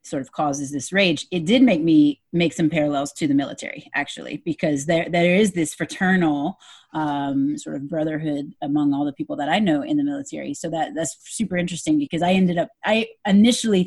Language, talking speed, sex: English, 205 wpm, female